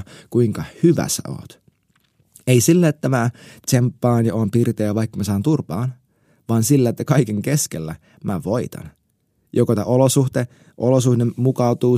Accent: native